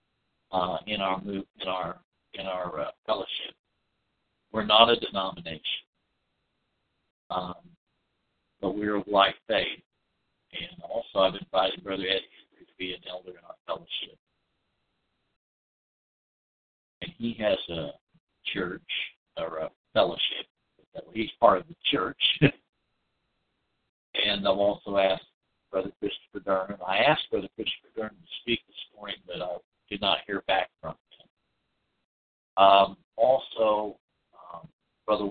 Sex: male